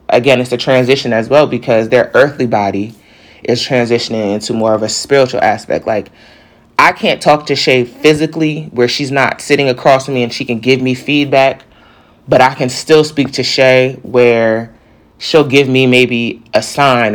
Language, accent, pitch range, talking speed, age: English, American, 110-135 Hz, 180 wpm, 20-39